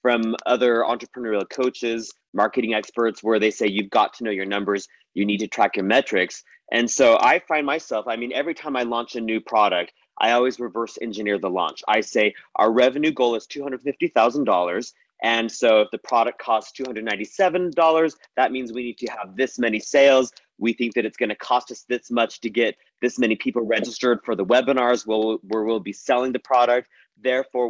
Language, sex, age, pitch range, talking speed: English, male, 30-49, 110-130 Hz, 195 wpm